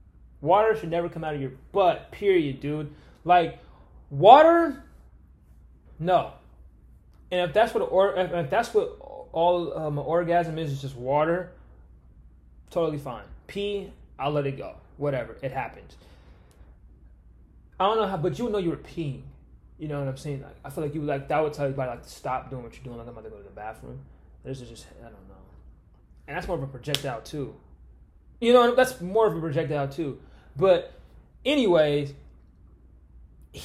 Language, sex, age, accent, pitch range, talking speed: English, male, 20-39, American, 110-180 Hz, 190 wpm